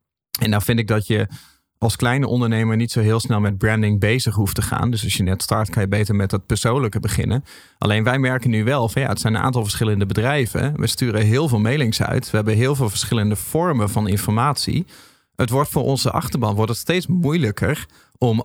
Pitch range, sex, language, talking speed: 105-125 Hz, male, Dutch, 220 wpm